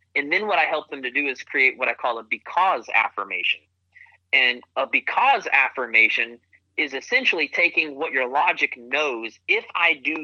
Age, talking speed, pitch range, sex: 30-49, 175 wpm, 95-150 Hz, male